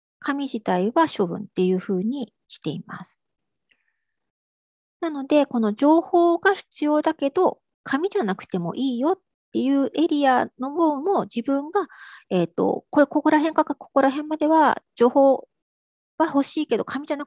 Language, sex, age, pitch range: Japanese, female, 40-59, 200-325 Hz